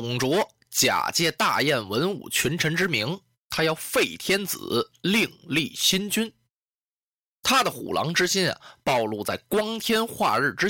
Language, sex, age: Chinese, male, 20-39